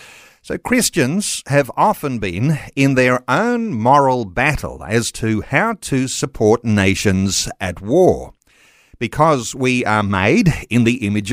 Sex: male